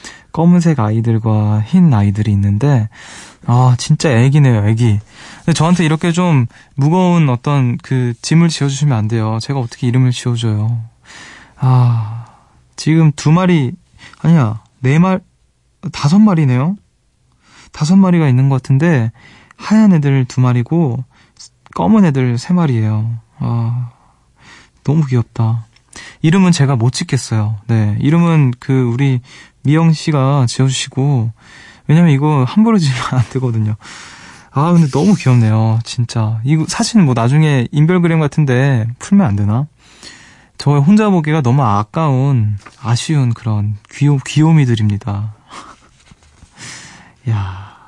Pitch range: 115-155 Hz